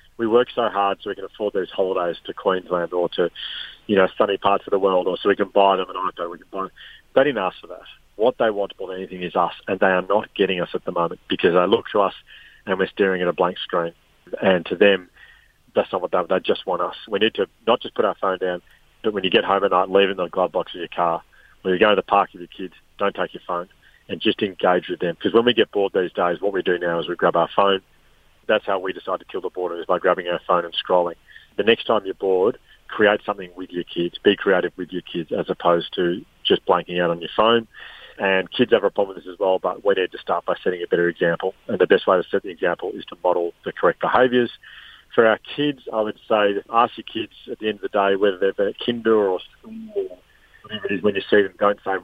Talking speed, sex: 270 wpm, male